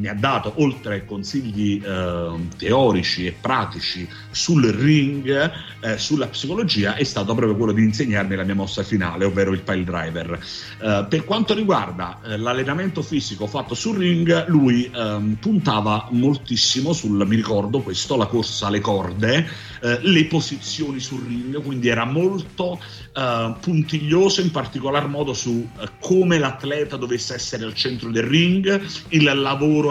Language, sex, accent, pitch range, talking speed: Italian, male, native, 110-160 Hz, 150 wpm